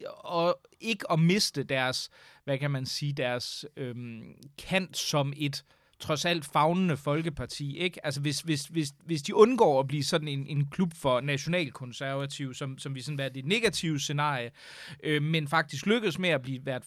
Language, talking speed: Danish, 180 wpm